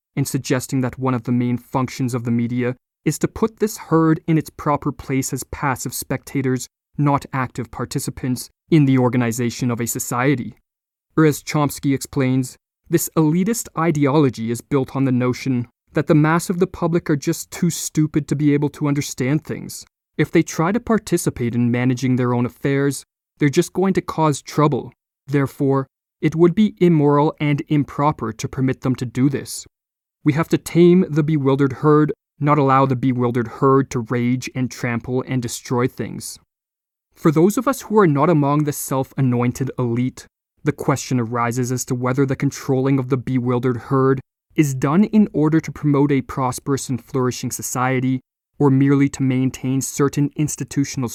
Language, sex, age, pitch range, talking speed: English, male, 20-39, 125-150 Hz, 175 wpm